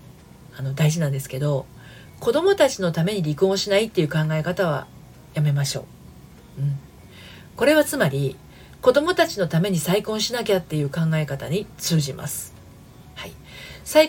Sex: female